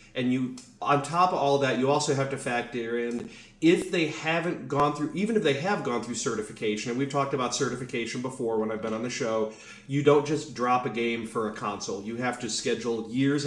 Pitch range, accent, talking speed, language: 115-140 Hz, American, 230 wpm, English